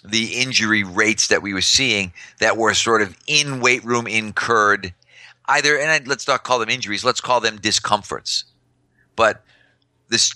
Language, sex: English, male